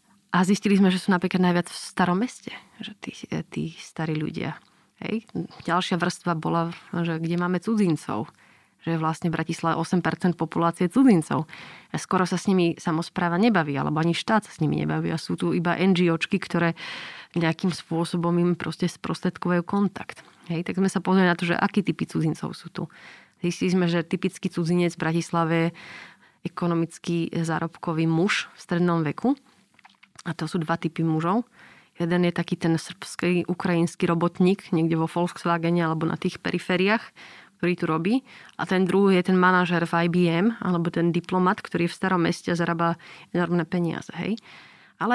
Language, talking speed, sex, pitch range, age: Slovak, 165 wpm, female, 170-190 Hz, 30-49